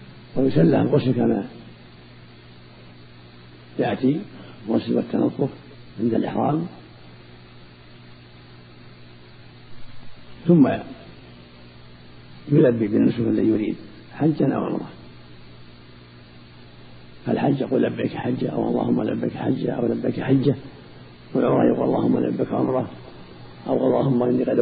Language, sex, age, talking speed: Arabic, male, 50-69, 90 wpm